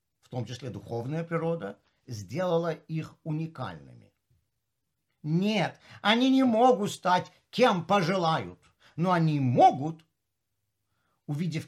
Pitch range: 135-205 Hz